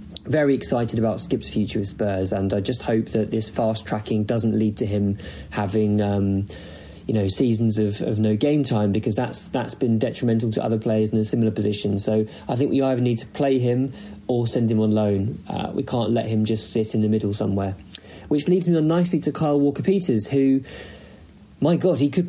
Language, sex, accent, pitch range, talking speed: English, male, British, 110-130 Hz, 215 wpm